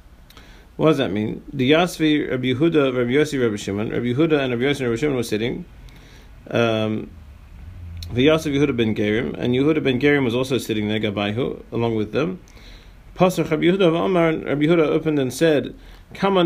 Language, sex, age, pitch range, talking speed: English, male, 40-59, 110-155 Hz, 175 wpm